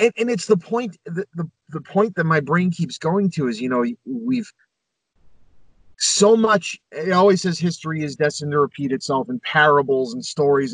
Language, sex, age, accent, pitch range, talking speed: English, male, 30-49, American, 135-190 Hz, 190 wpm